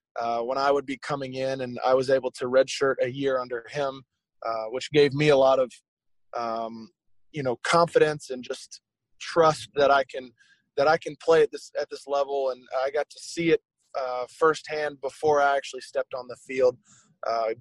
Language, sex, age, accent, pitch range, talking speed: English, male, 20-39, American, 130-155 Hz, 200 wpm